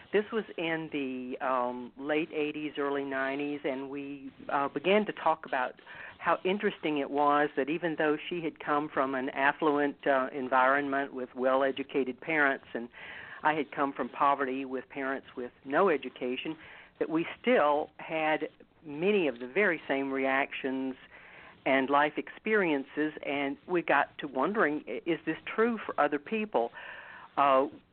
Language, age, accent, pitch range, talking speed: English, 50-69, American, 130-155 Hz, 150 wpm